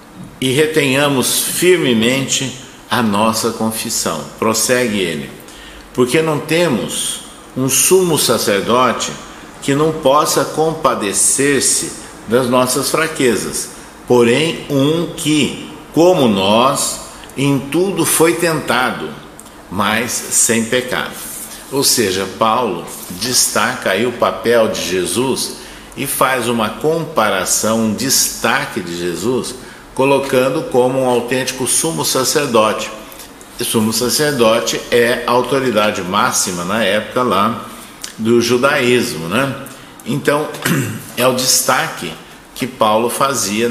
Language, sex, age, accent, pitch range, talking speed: Portuguese, male, 60-79, Brazilian, 115-140 Hz, 100 wpm